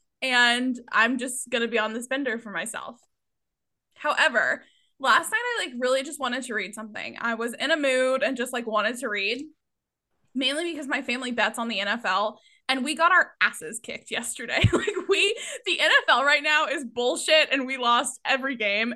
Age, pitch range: 10-29, 230-295 Hz